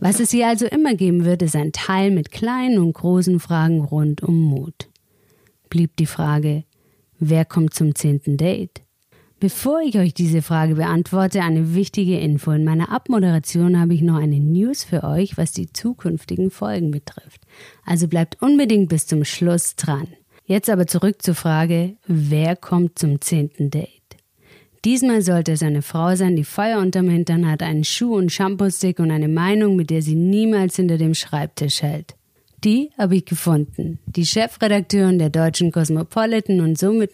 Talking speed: 170 wpm